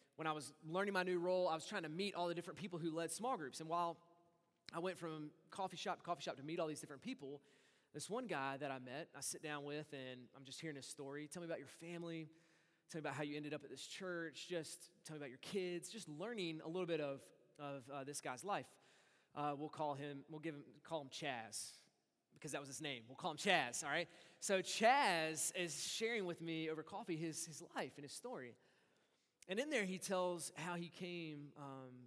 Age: 20-39